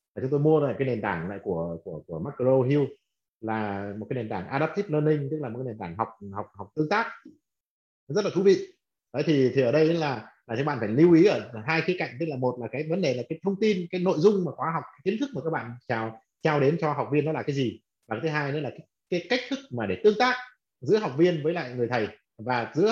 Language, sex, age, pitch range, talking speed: Vietnamese, male, 30-49, 115-155 Hz, 280 wpm